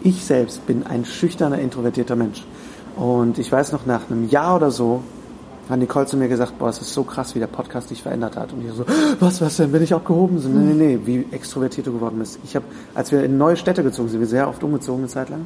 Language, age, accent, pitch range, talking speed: German, 30-49, German, 125-155 Hz, 260 wpm